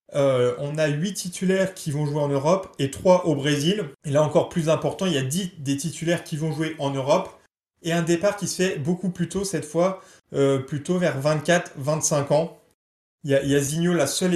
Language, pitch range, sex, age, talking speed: French, 140-170 Hz, male, 20-39, 230 wpm